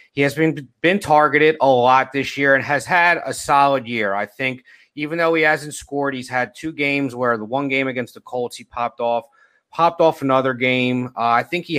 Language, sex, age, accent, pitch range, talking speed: English, male, 30-49, American, 120-140 Hz, 225 wpm